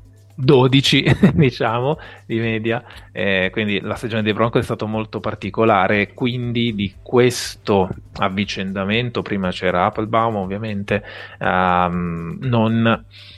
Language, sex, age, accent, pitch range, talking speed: Italian, male, 30-49, native, 100-120 Hz, 110 wpm